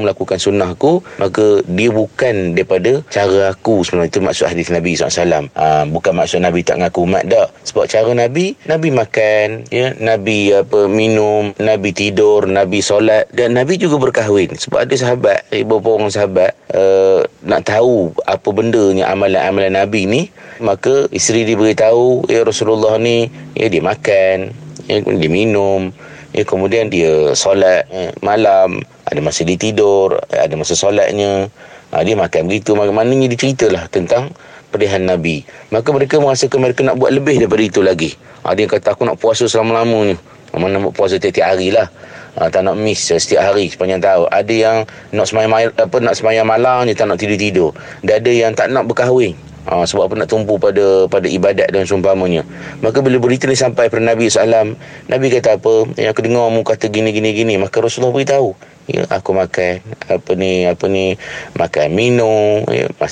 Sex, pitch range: male, 95-115 Hz